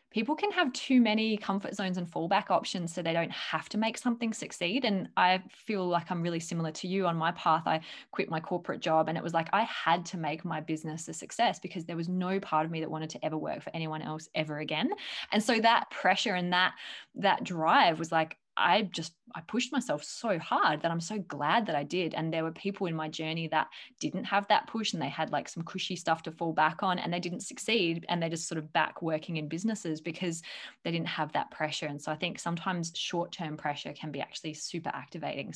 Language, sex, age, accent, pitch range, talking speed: English, female, 20-39, Australian, 160-200 Hz, 240 wpm